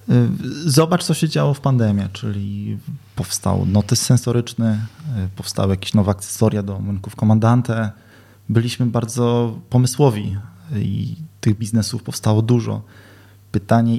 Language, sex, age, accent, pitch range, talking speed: Polish, male, 20-39, native, 100-115 Hz, 110 wpm